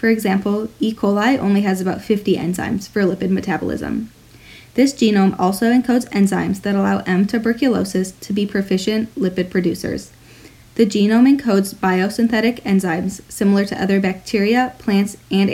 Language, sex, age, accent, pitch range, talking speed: English, female, 20-39, American, 185-220 Hz, 145 wpm